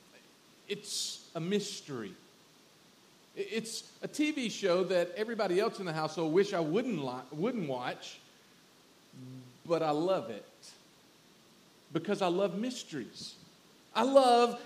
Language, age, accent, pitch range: English, 40-59, American, 165-235 Hz